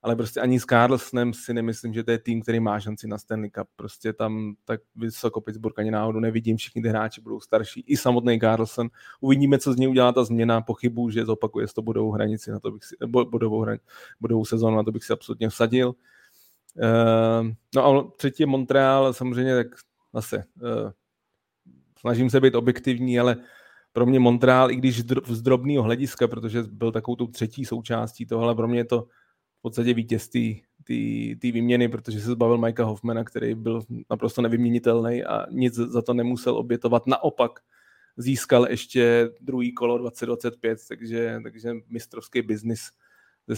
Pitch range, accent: 115-120 Hz, native